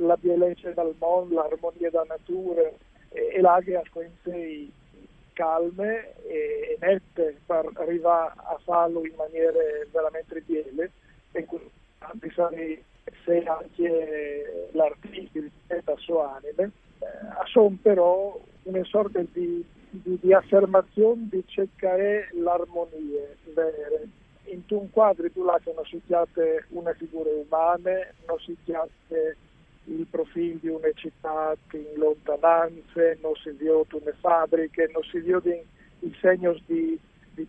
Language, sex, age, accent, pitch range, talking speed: Italian, male, 50-69, native, 160-190 Hz, 130 wpm